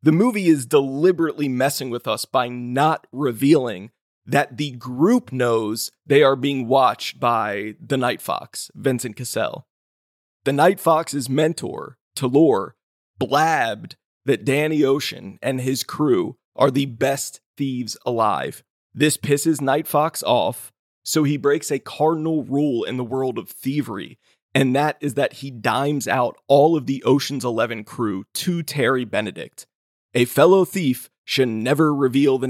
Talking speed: 150 wpm